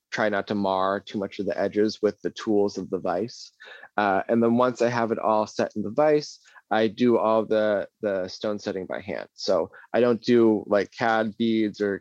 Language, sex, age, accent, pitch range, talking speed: English, male, 20-39, American, 100-115 Hz, 215 wpm